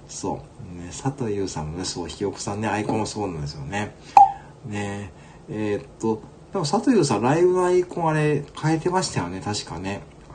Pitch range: 100-150 Hz